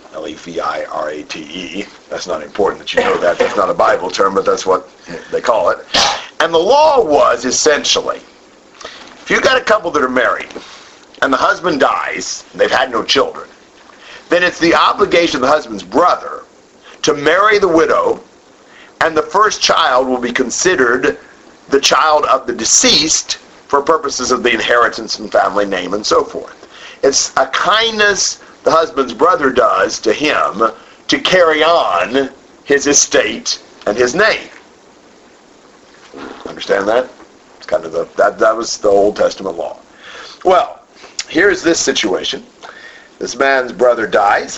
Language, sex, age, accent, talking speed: English, male, 50-69, American, 160 wpm